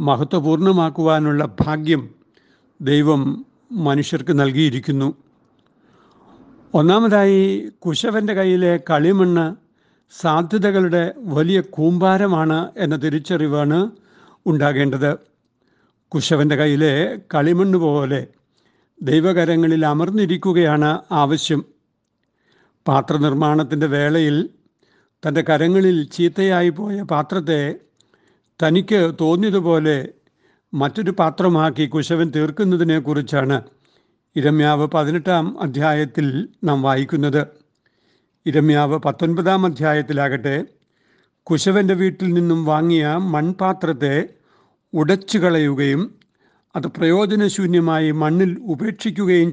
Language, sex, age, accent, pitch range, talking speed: Malayalam, male, 60-79, native, 150-180 Hz, 65 wpm